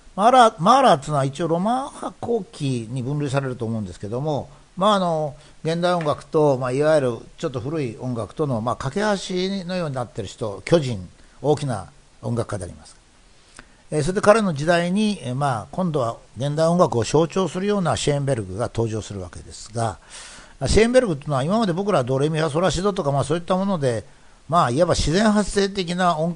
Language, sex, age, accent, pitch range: Japanese, male, 60-79, native, 120-185 Hz